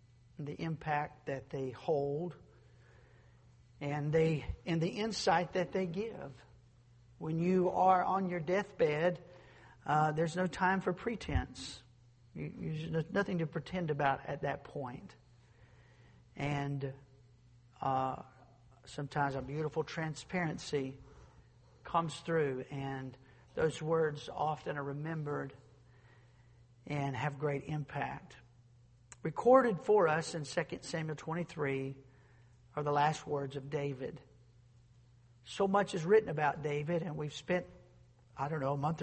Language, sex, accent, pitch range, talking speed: English, male, American, 130-160 Hz, 120 wpm